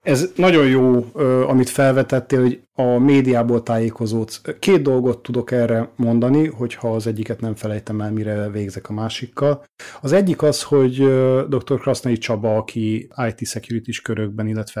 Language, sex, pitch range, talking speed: Hungarian, male, 110-130 Hz, 145 wpm